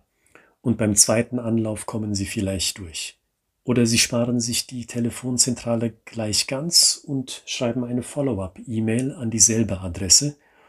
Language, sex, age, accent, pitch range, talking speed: German, male, 40-59, German, 95-115 Hz, 130 wpm